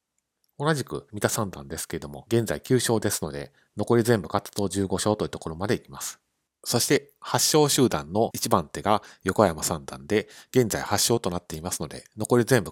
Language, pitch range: Japanese, 80-115 Hz